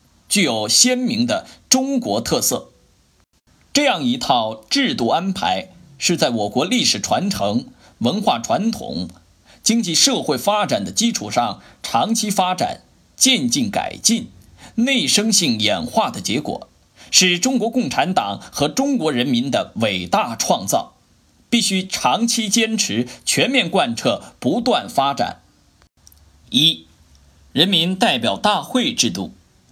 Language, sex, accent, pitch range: Chinese, male, native, 145-240 Hz